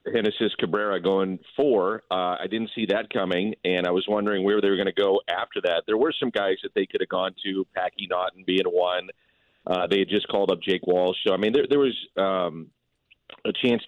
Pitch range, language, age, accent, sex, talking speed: 90-115 Hz, English, 40-59, American, male, 230 wpm